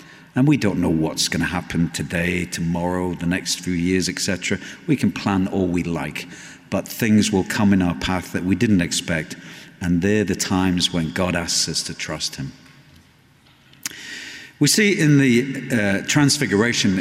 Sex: male